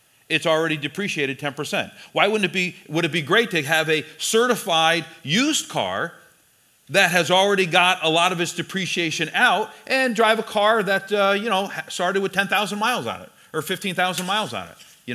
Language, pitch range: English, 165-220 Hz